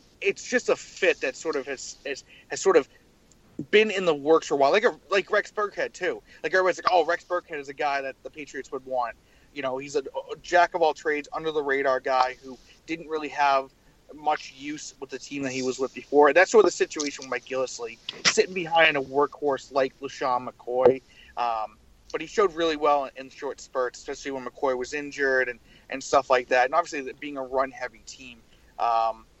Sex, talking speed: male, 220 wpm